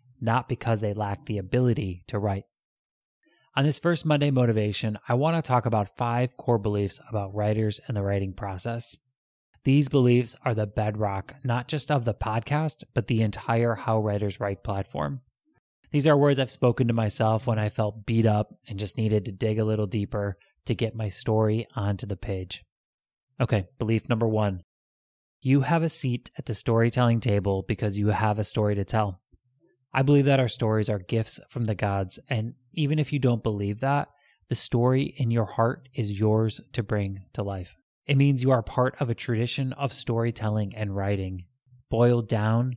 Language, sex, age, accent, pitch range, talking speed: English, male, 30-49, American, 105-125 Hz, 185 wpm